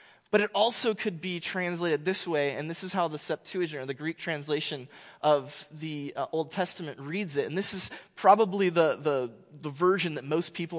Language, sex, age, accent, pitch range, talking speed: English, male, 20-39, American, 150-190 Hz, 195 wpm